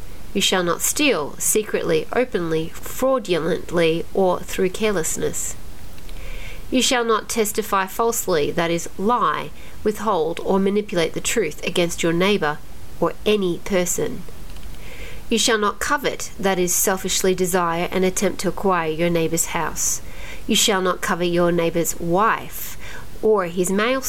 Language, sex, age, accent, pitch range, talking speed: English, female, 40-59, Australian, 170-215 Hz, 135 wpm